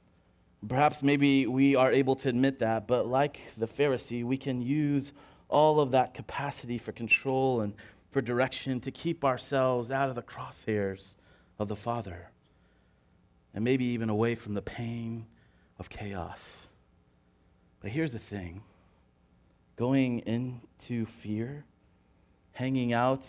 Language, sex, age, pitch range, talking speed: English, male, 30-49, 105-130 Hz, 135 wpm